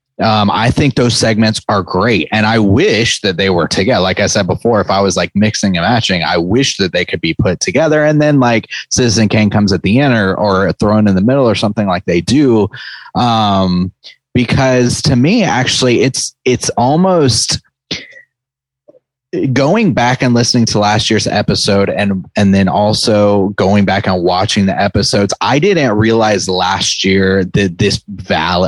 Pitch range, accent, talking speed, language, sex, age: 100-130 Hz, American, 180 wpm, English, male, 30-49